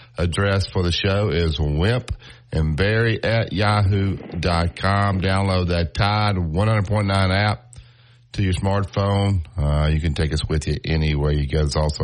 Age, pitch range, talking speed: 50-69, 85-110 Hz, 150 wpm